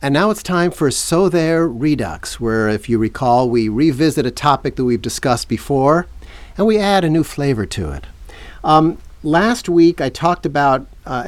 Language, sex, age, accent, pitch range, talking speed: English, male, 50-69, American, 110-155 Hz, 185 wpm